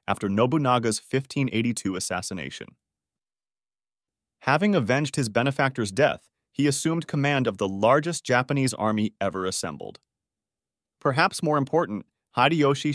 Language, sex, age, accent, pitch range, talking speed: English, male, 30-49, American, 105-140 Hz, 105 wpm